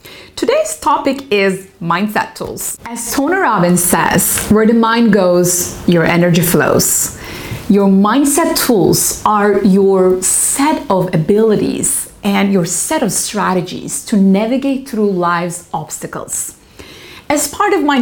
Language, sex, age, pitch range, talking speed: English, female, 30-49, 185-255 Hz, 125 wpm